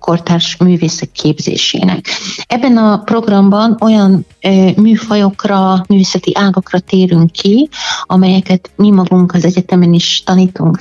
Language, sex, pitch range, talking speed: Hungarian, female, 170-190 Hz, 105 wpm